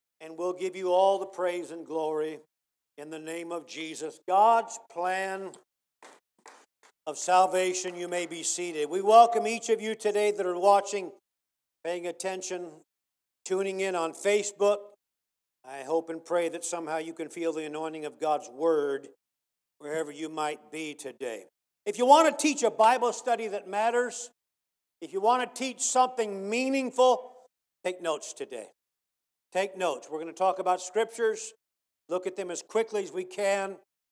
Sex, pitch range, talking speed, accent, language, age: male, 170-240 Hz, 160 wpm, American, English, 50-69